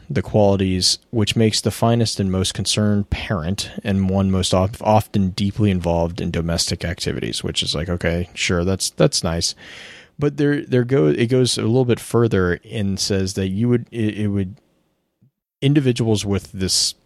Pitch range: 90-110 Hz